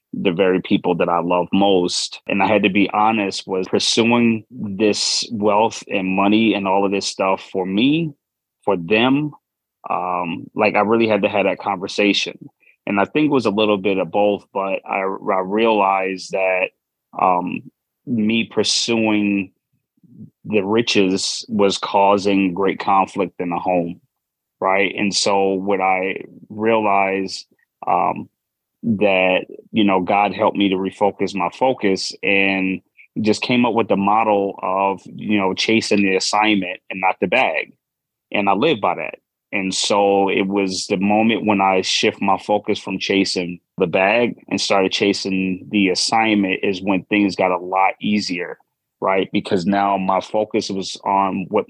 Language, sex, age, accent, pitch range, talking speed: English, male, 30-49, American, 95-105 Hz, 160 wpm